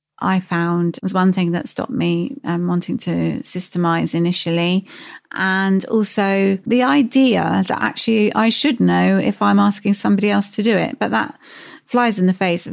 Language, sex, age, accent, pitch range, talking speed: English, female, 30-49, British, 170-205 Hz, 175 wpm